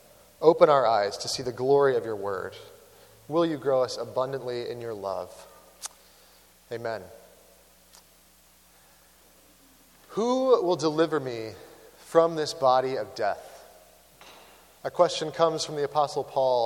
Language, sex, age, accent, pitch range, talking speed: English, male, 30-49, American, 130-185 Hz, 125 wpm